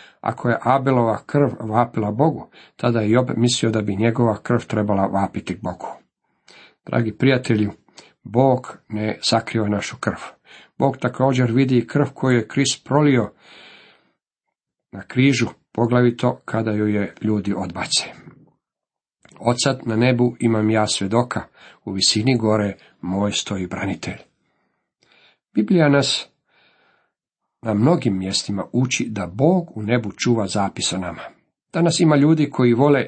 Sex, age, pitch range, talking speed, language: male, 50-69, 105-130 Hz, 125 wpm, Croatian